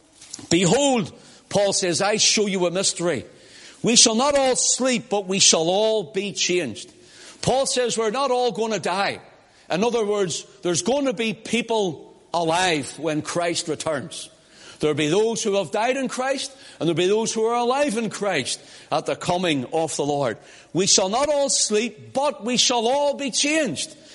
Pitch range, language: 170-230 Hz, English